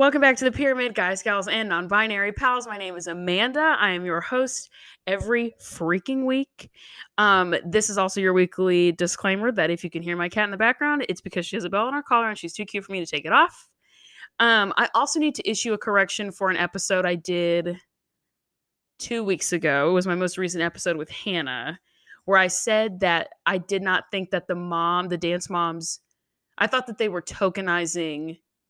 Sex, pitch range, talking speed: female, 170-220 Hz, 210 wpm